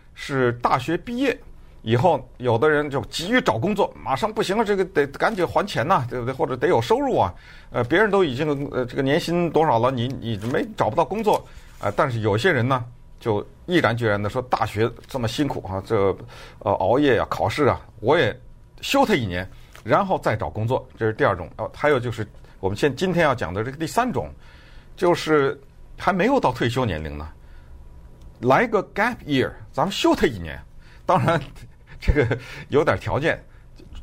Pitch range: 105-155 Hz